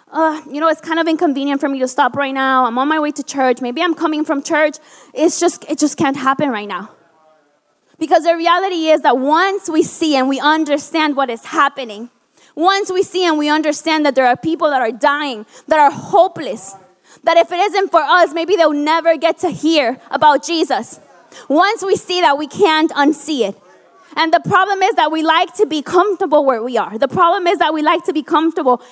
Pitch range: 270-335 Hz